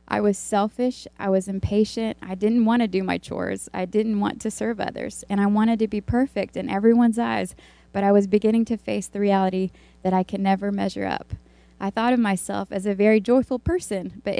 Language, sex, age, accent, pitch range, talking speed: English, female, 20-39, American, 190-215 Hz, 215 wpm